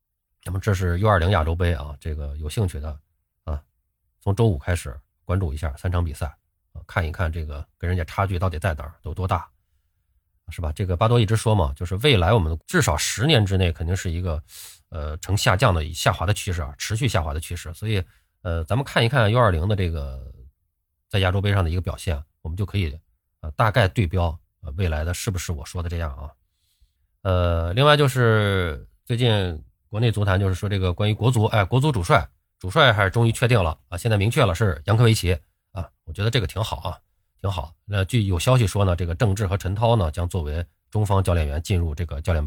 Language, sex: Chinese, male